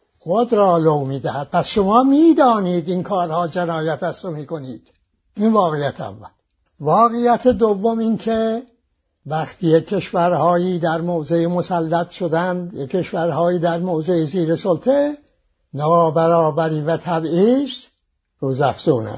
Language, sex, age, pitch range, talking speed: English, male, 60-79, 160-230 Hz, 115 wpm